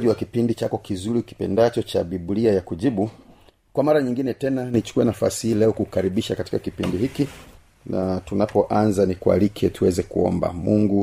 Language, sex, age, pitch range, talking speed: Swahili, male, 40-59, 95-115 Hz, 150 wpm